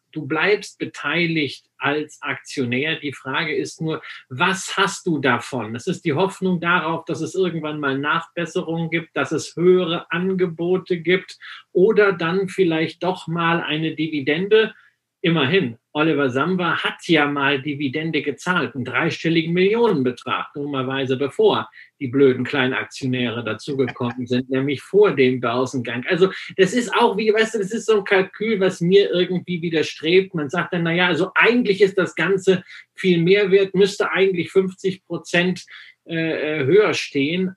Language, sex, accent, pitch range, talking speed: German, male, German, 150-185 Hz, 150 wpm